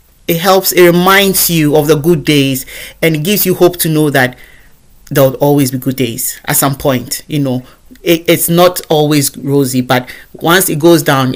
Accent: Nigerian